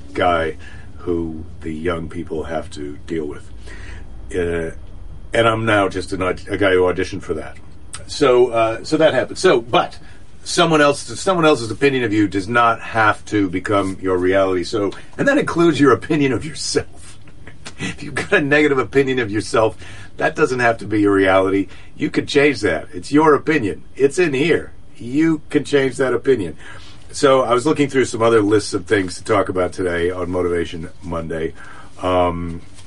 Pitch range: 85-110 Hz